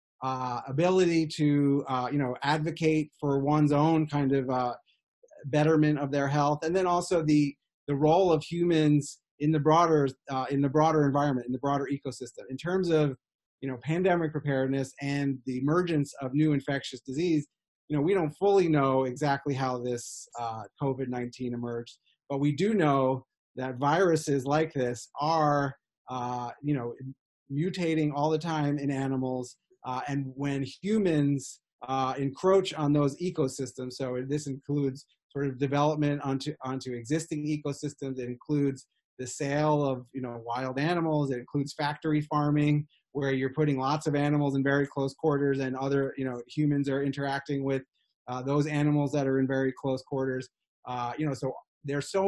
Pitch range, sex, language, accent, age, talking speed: 135-150 Hz, male, English, American, 30-49, 170 wpm